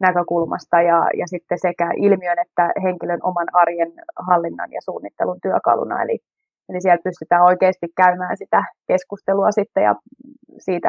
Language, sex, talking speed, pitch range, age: Finnish, female, 140 wpm, 170-195 Hz, 20-39